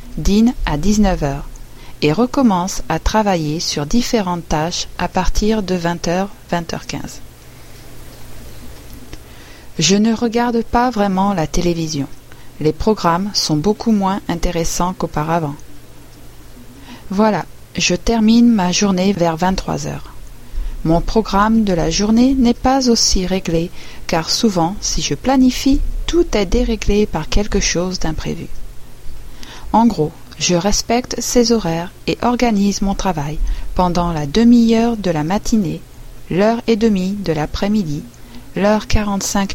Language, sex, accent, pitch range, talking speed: French, female, French, 155-215 Hz, 125 wpm